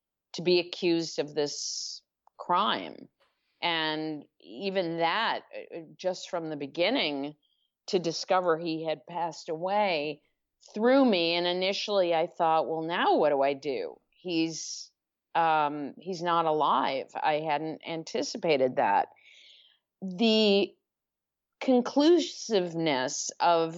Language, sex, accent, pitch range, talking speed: English, female, American, 160-190 Hz, 105 wpm